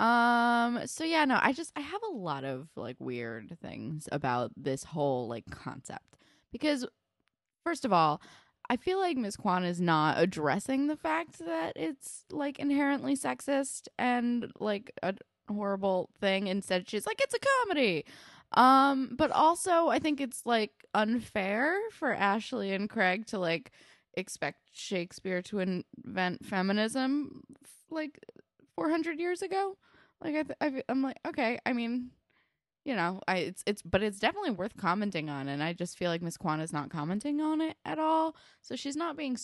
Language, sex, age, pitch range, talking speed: English, female, 10-29, 170-280 Hz, 165 wpm